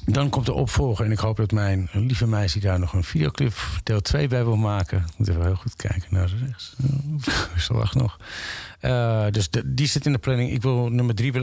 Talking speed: 225 wpm